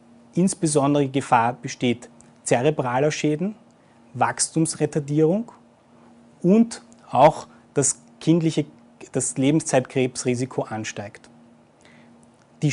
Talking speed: 65 wpm